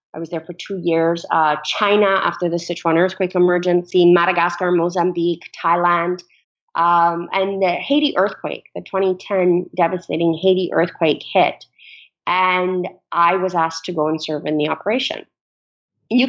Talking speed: 145 wpm